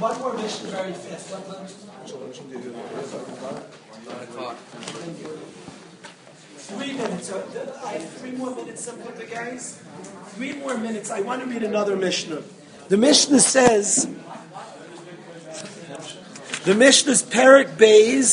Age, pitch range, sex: 40-59, 210-265 Hz, male